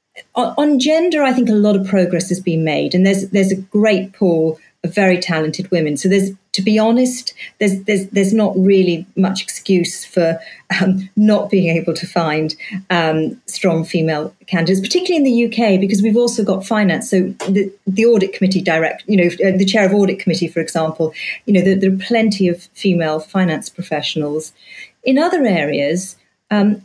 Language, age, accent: English, 40-59, British